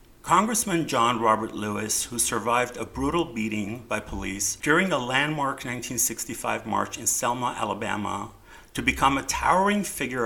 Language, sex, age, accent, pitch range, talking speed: English, male, 50-69, American, 105-125 Hz, 140 wpm